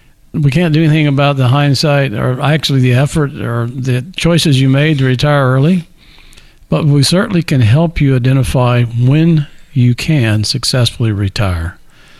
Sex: male